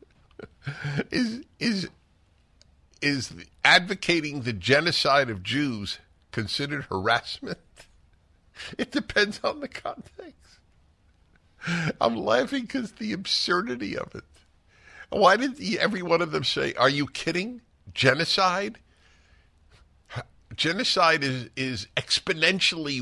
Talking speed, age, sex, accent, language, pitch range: 100 wpm, 50-69, male, American, English, 80-125 Hz